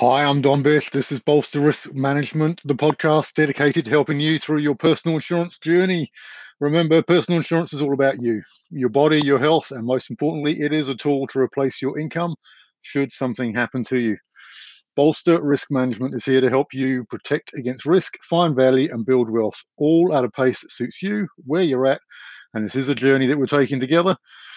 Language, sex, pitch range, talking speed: English, male, 125-155 Hz, 200 wpm